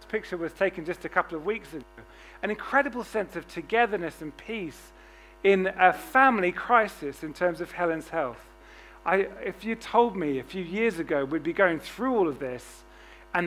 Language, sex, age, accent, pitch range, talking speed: English, male, 40-59, British, 185-245 Hz, 185 wpm